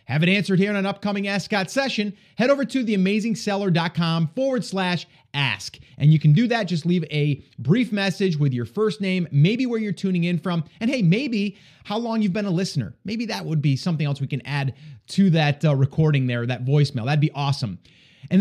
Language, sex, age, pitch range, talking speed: English, male, 30-49, 145-195 Hz, 210 wpm